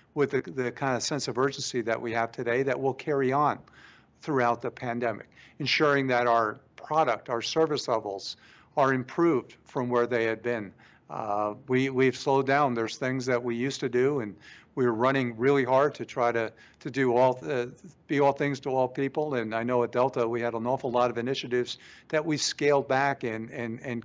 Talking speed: 210 wpm